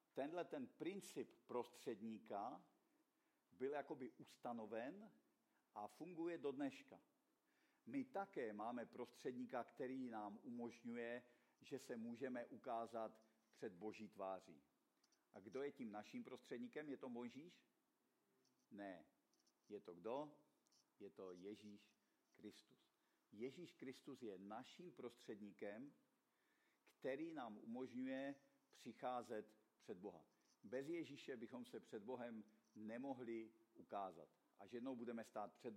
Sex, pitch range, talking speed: male, 110-140 Hz, 110 wpm